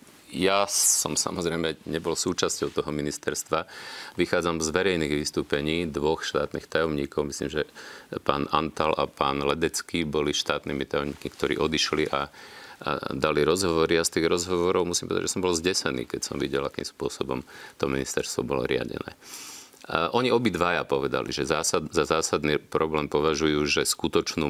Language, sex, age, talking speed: Slovak, male, 40-59, 145 wpm